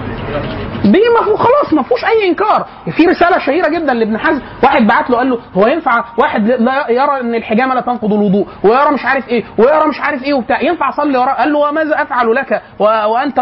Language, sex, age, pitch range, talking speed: Arabic, male, 30-49, 215-300 Hz, 215 wpm